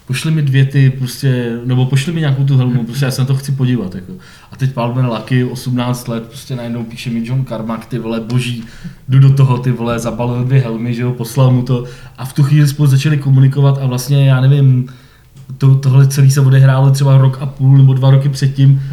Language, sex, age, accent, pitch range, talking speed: Czech, male, 20-39, native, 120-135 Hz, 225 wpm